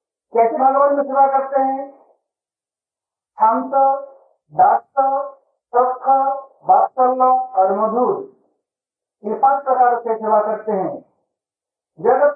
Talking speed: 80 wpm